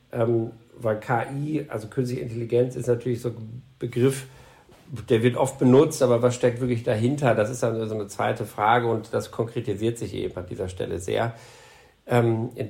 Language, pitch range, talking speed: German, 110-125 Hz, 170 wpm